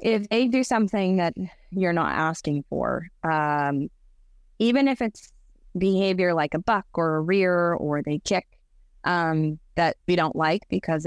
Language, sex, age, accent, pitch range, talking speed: English, female, 20-39, American, 155-195 Hz, 155 wpm